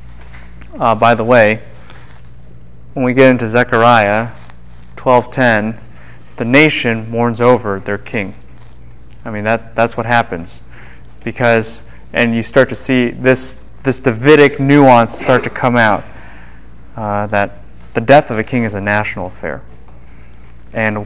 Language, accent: English, American